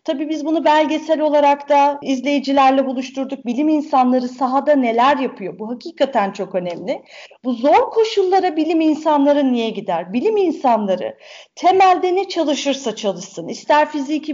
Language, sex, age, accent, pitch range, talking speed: Turkish, female, 40-59, native, 235-295 Hz, 135 wpm